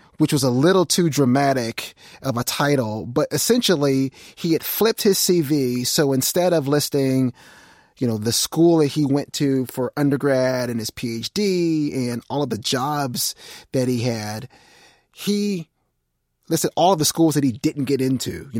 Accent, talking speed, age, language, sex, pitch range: American, 170 wpm, 30-49, English, male, 125-165 Hz